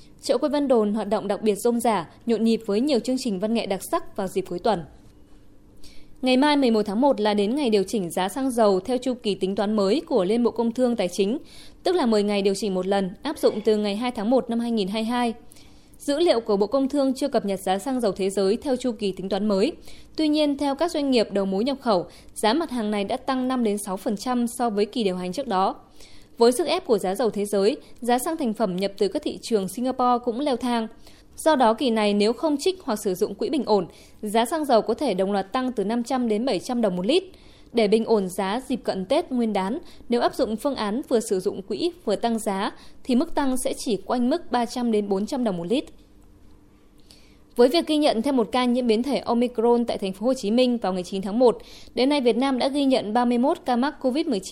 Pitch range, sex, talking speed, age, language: 200-255 Hz, female, 250 wpm, 20-39, Vietnamese